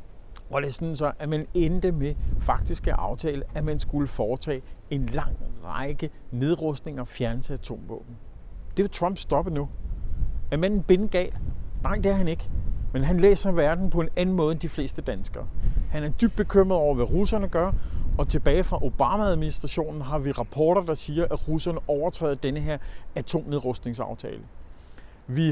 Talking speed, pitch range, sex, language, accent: 170 wpm, 125-170 Hz, male, Danish, native